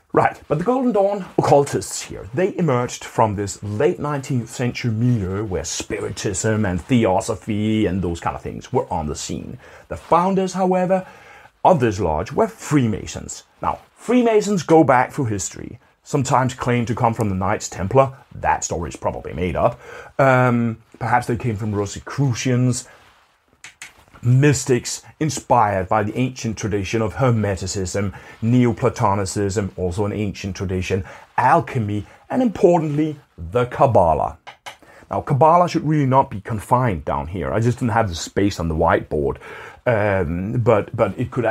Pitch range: 100-135 Hz